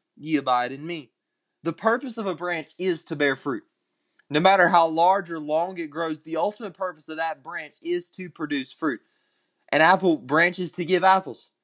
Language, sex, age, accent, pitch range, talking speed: English, male, 20-39, American, 155-195 Hz, 195 wpm